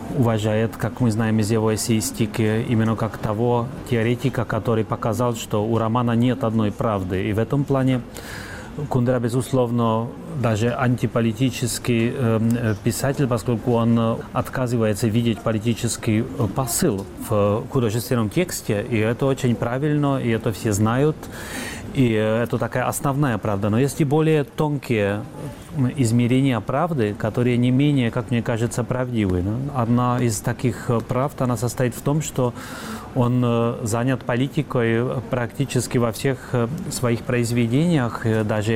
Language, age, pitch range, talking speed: Russian, 30-49, 110-125 Hz, 125 wpm